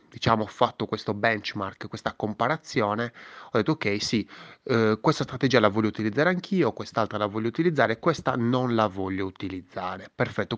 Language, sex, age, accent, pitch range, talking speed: Italian, male, 20-39, native, 100-130 Hz, 160 wpm